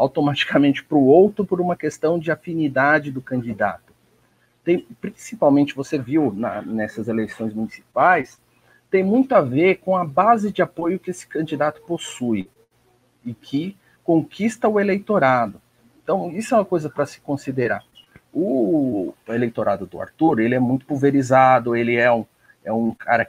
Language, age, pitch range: Portuguese, 50-69, 120-165 Hz